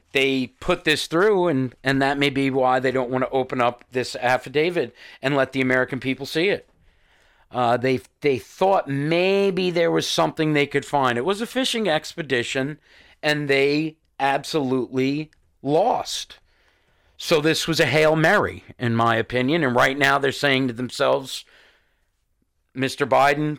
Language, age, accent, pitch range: English, 50-69, American, 125-150 Hz